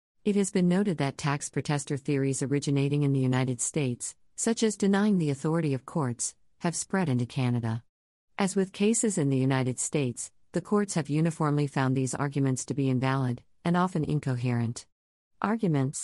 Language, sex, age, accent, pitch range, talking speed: English, female, 50-69, American, 130-160 Hz, 170 wpm